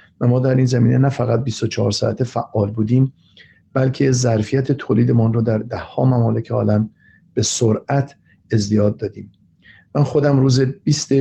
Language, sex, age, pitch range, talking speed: Persian, male, 50-69, 115-135 Hz, 150 wpm